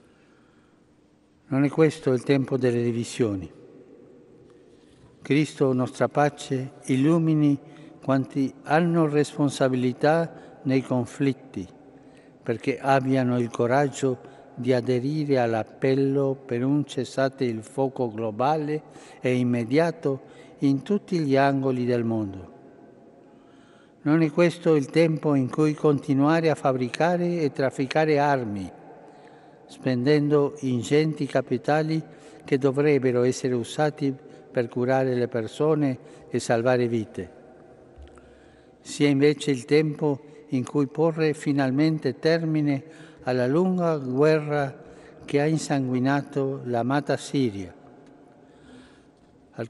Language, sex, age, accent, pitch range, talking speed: Italian, male, 60-79, native, 125-150 Hz, 100 wpm